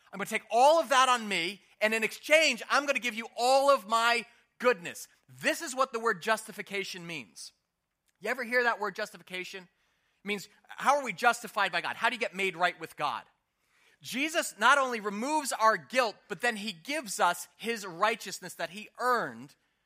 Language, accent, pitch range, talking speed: English, American, 185-255 Hz, 200 wpm